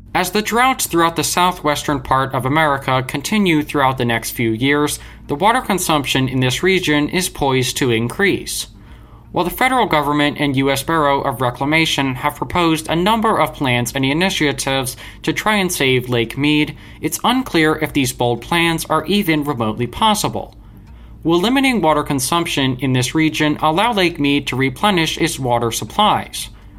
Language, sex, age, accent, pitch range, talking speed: English, male, 20-39, American, 130-170 Hz, 165 wpm